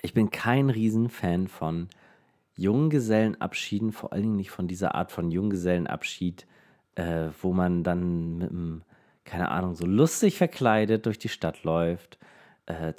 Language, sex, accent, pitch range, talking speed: German, male, German, 85-110 Hz, 145 wpm